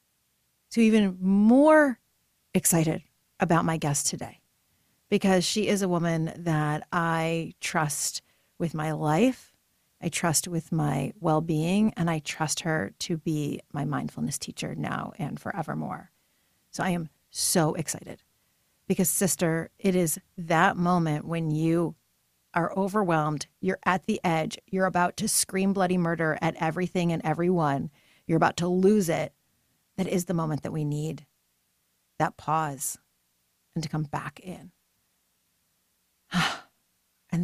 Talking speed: 135 wpm